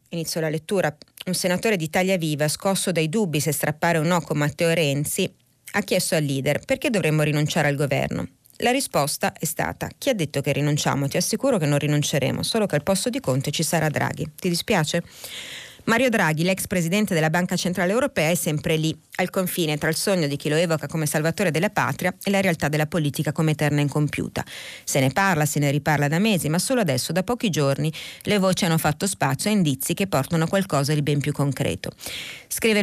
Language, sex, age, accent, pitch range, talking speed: Italian, female, 30-49, native, 150-185 Hz, 210 wpm